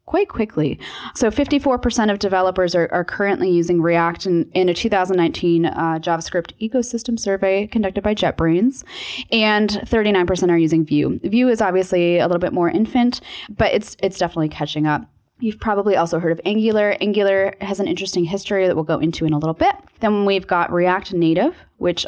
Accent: American